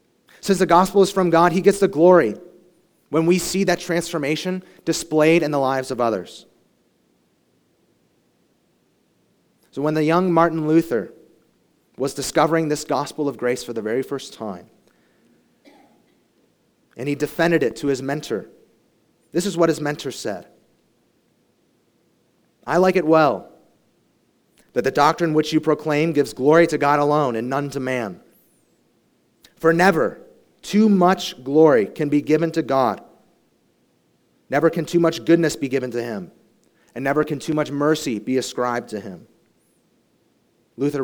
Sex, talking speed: male, 145 wpm